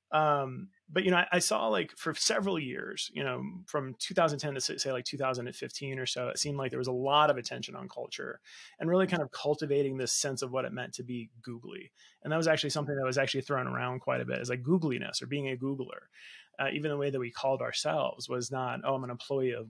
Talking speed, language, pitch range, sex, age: 245 wpm, English, 125-155 Hz, male, 30-49